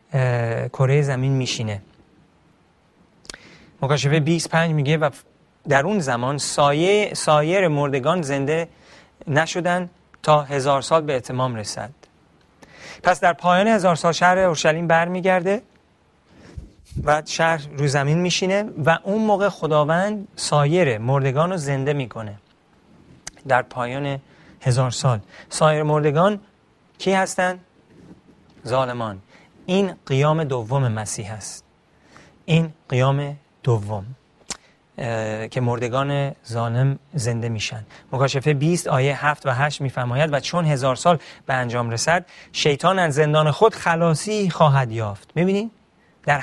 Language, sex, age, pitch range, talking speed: Persian, male, 40-59, 130-170 Hz, 115 wpm